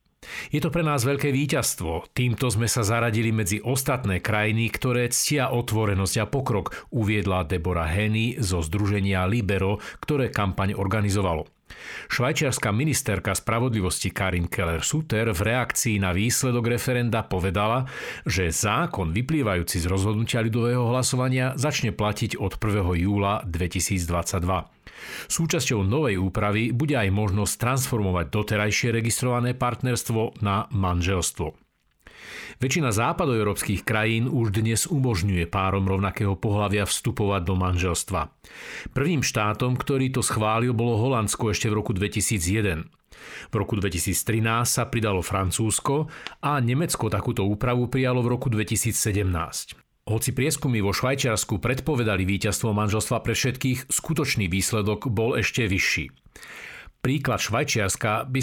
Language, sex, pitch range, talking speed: Slovak, male, 100-125 Hz, 120 wpm